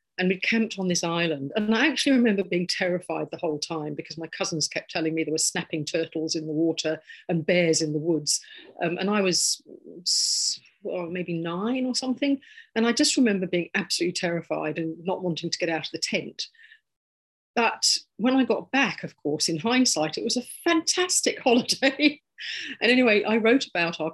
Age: 40-59